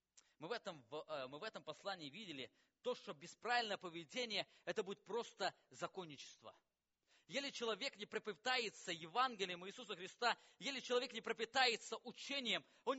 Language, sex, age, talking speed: English, male, 20-39, 125 wpm